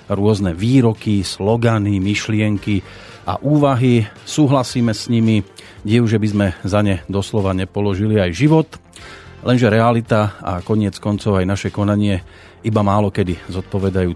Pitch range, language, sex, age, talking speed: 95-120 Hz, Slovak, male, 40-59, 130 wpm